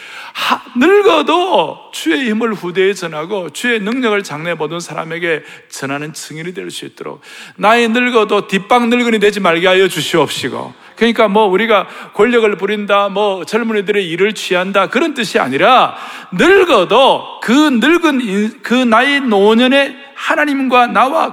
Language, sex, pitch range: Korean, male, 155-240 Hz